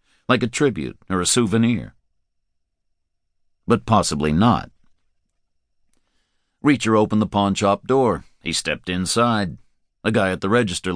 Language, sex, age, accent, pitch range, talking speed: English, male, 60-79, American, 75-105 Hz, 125 wpm